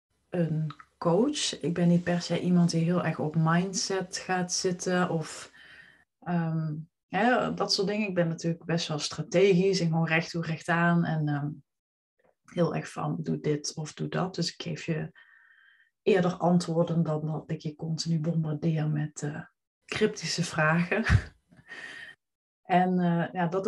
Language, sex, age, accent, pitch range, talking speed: Dutch, female, 20-39, Dutch, 160-195 Hz, 150 wpm